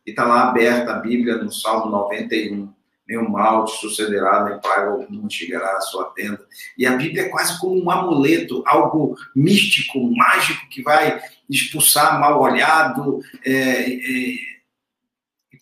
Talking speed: 145 wpm